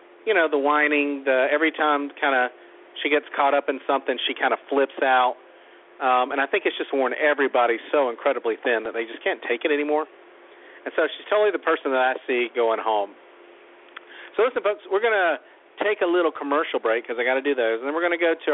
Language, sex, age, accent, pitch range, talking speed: English, male, 40-59, American, 130-175 Hz, 235 wpm